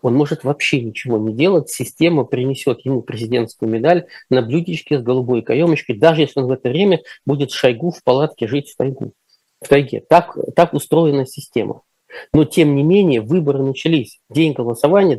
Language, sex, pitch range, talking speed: Russian, male, 125-170 Hz, 175 wpm